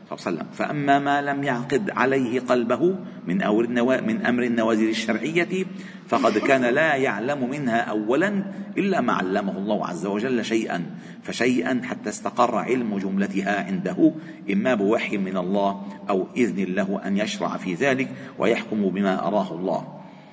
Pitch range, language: 115-170 Hz, Arabic